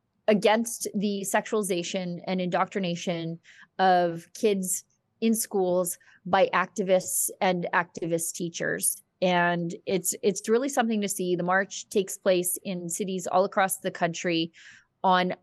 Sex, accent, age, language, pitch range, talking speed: female, American, 20-39, English, 175-205 Hz, 125 wpm